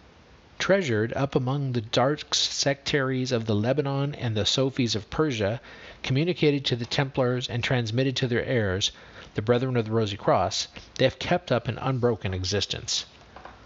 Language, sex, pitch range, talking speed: English, male, 110-135 Hz, 160 wpm